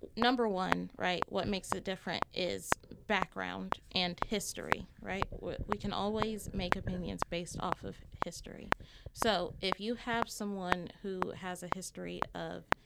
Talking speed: 145 wpm